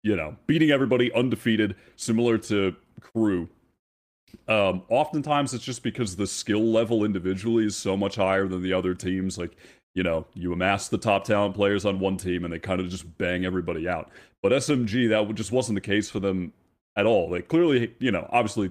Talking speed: 195 wpm